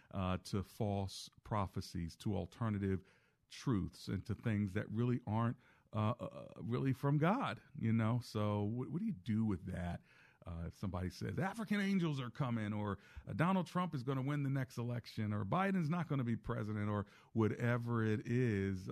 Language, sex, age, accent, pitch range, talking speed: English, male, 40-59, American, 95-120 Hz, 185 wpm